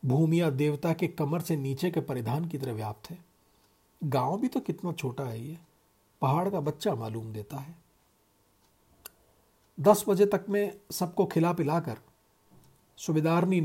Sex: male